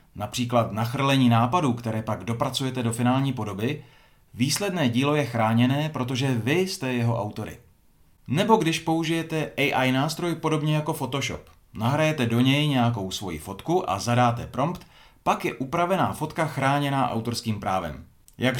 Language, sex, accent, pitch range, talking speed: Czech, male, native, 115-150 Hz, 140 wpm